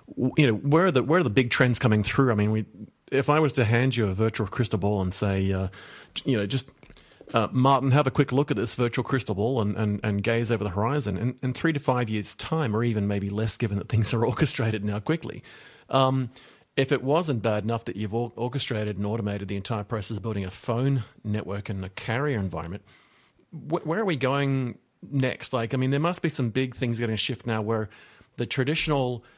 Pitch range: 110-135 Hz